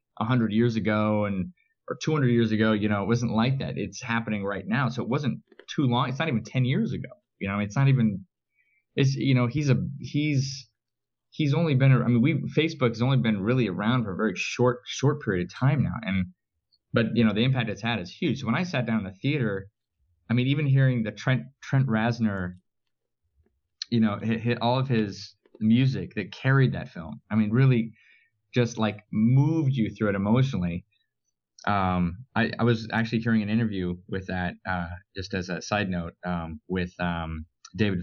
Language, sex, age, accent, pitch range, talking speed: English, male, 20-39, American, 95-125 Hz, 205 wpm